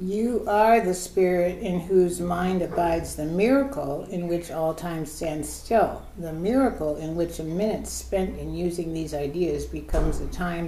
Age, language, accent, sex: 60-79, English, American, female